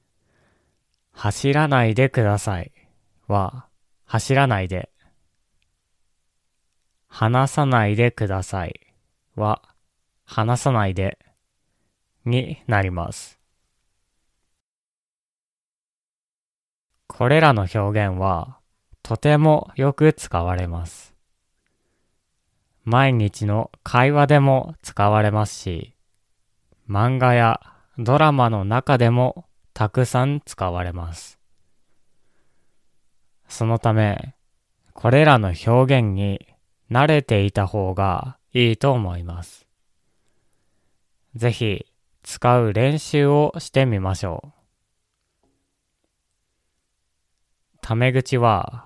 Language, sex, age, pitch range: Japanese, male, 20-39, 95-125 Hz